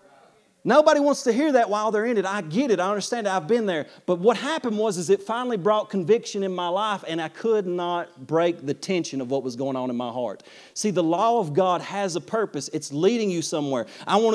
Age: 40-59